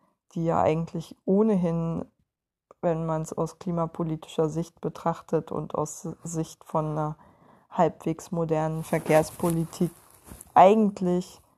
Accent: German